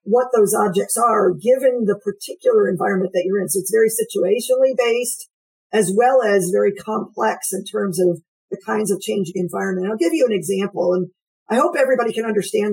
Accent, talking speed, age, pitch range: American, 190 wpm, 50-69, 200-310 Hz